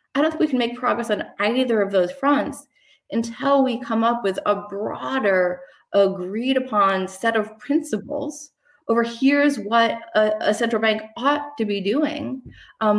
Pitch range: 190-235 Hz